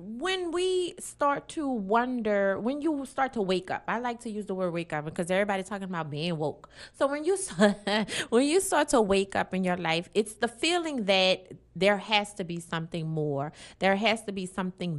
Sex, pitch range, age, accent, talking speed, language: female, 180-250 Hz, 30-49, American, 210 wpm, English